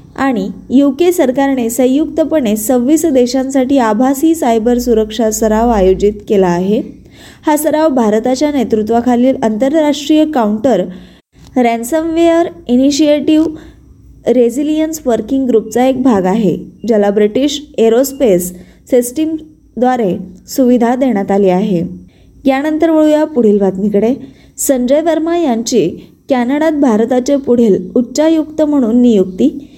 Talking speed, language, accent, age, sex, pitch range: 100 wpm, Marathi, native, 20-39, female, 220-280 Hz